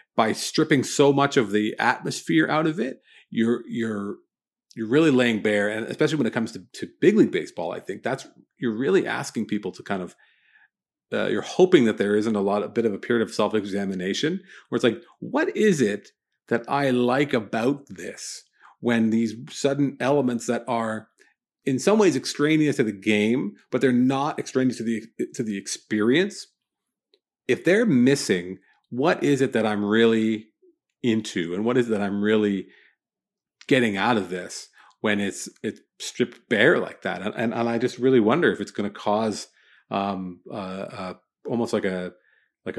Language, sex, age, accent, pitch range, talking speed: English, male, 40-59, American, 105-130 Hz, 185 wpm